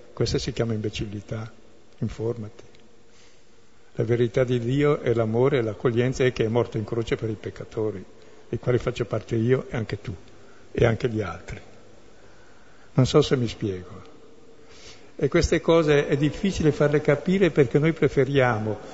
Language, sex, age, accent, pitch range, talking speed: Italian, male, 60-79, native, 115-140 Hz, 155 wpm